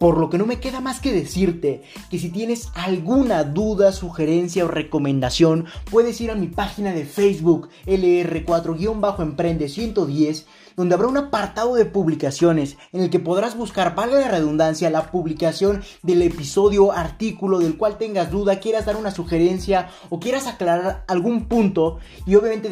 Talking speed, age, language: 160 wpm, 30-49, Spanish